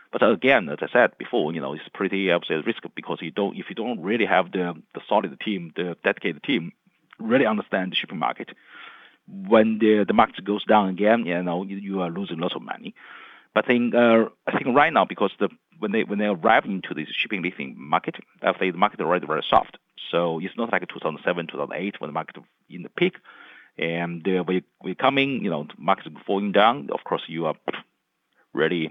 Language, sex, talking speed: English, male, 215 wpm